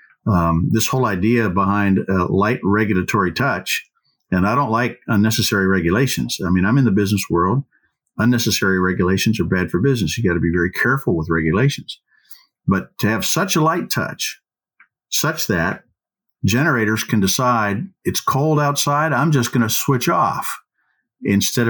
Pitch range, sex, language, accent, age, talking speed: 100-130 Hz, male, English, American, 50-69, 165 wpm